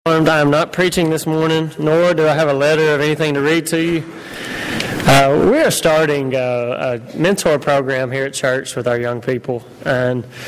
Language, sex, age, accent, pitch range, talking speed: English, male, 20-39, American, 140-170 Hz, 195 wpm